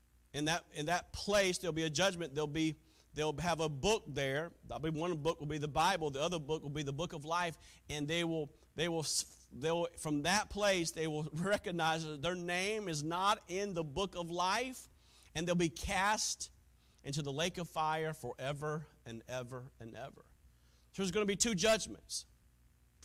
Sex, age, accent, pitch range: male, 40-59, American, 115-170 Hz